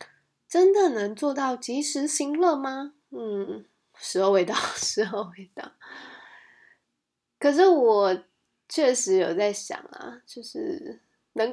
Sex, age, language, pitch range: female, 20-39, Chinese, 225-355 Hz